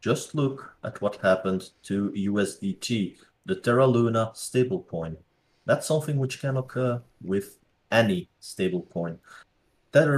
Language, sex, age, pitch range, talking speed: English, male, 30-49, 100-125 Hz, 120 wpm